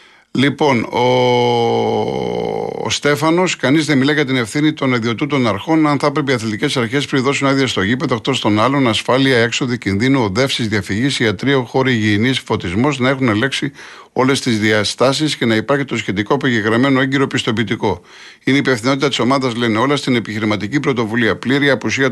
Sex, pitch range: male, 105-135 Hz